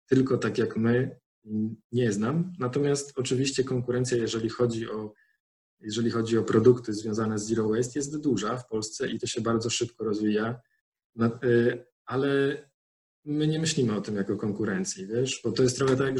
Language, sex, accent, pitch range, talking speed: Polish, male, native, 110-125 Hz, 150 wpm